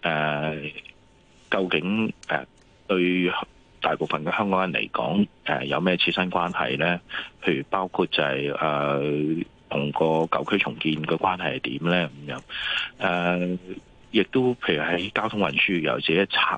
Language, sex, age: Chinese, male, 30-49